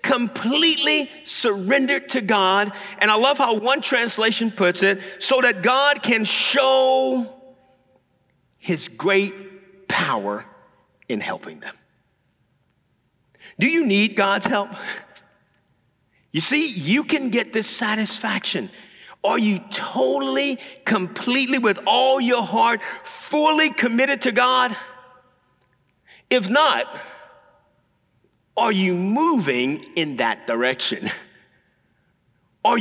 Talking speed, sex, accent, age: 100 wpm, male, American, 50-69